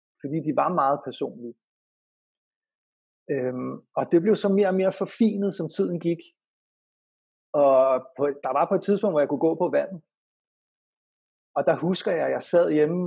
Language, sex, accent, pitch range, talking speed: English, male, Danish, 150-190 Hz, 175 wpm